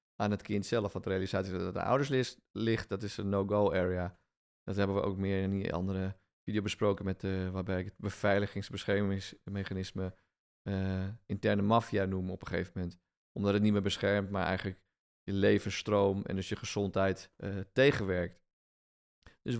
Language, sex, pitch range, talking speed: Dutch, male, 95-110 Hz, 180 wpm